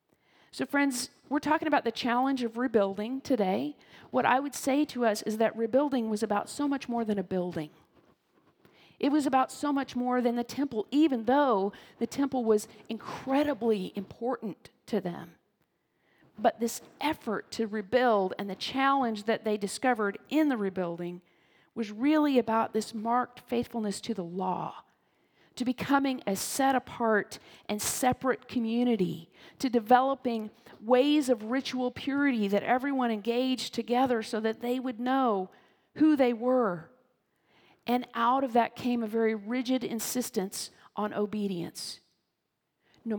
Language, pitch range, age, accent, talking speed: English, 210-260 Hz, 40-59, American, 145 wpm